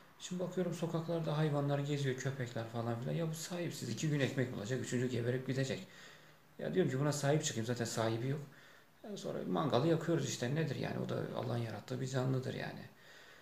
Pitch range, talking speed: 120-160 Hz, 180 wpm